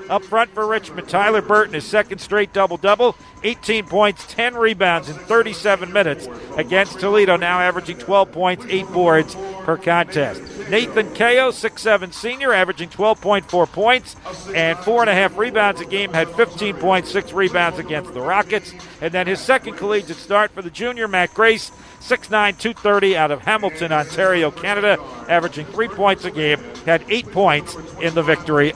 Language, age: English, 50-69